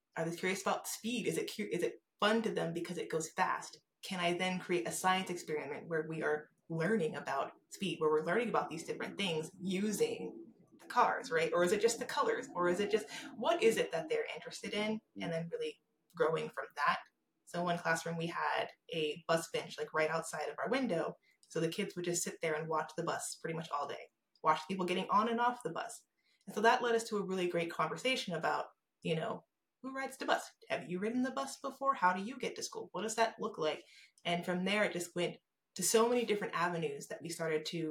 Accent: American